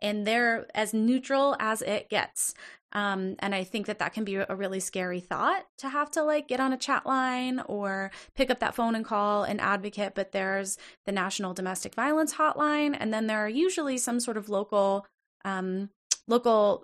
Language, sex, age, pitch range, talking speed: English, female, 20-39, 195-245 Hz, 195 wpm